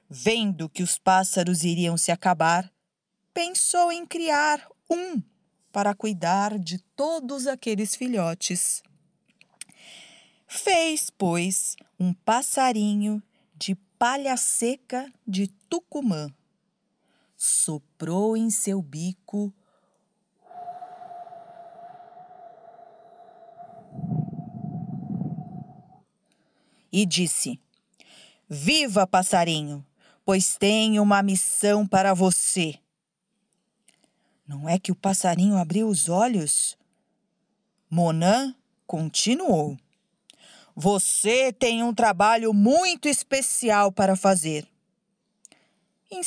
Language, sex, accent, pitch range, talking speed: Portuguese, female, Brazilian, 185-245 Hz, 75 wpm